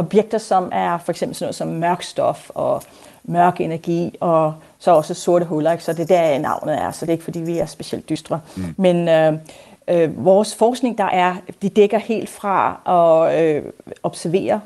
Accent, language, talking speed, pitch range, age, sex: native, Danish, 195 wpm, 175-210 Hz, 40-59, female